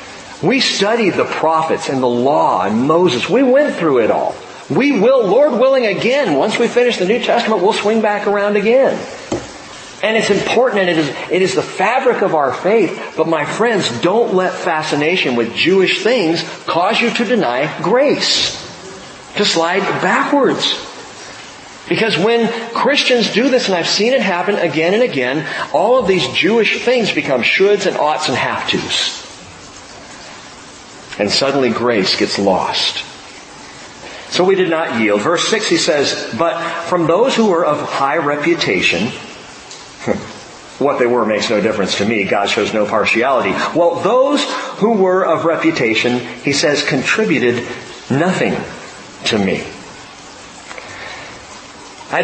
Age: 40-59